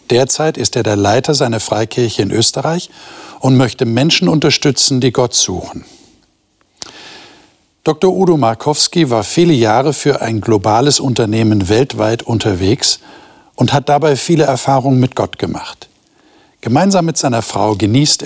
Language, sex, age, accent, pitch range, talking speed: German, male, 60-79, German, 110-150 Hz, 135 wpm